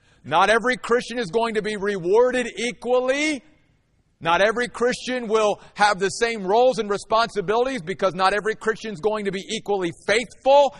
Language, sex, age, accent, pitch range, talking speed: English, male, 50-69, American, 160-240 Hz, 160 wpm